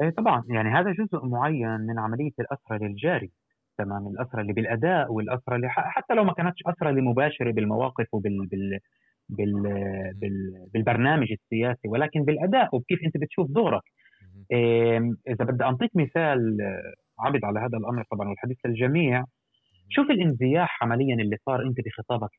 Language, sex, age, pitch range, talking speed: Arabic, male, 30-49, 110-165 Hz, 135 wpm